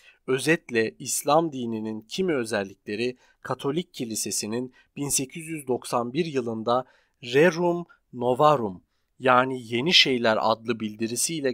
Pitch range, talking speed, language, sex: 115-155 Hz, 85 wpm, Turkish, male